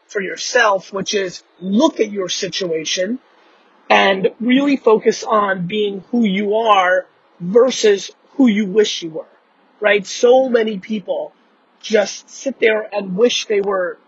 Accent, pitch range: American, 185-235 Hz